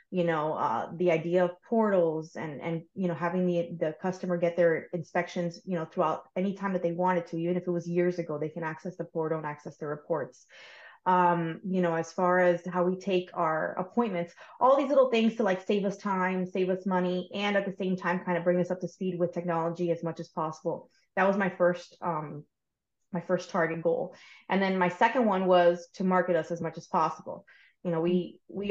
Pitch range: 170-190 Hz